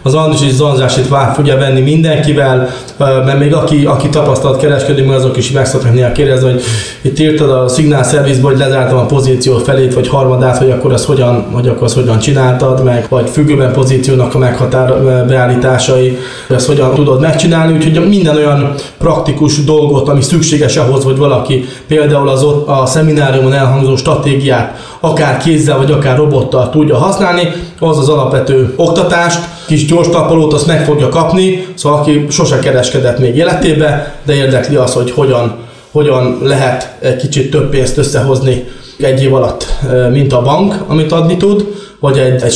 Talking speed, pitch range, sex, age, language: 155 wpm, 130-150 Hz, male, 20-39, Hungarian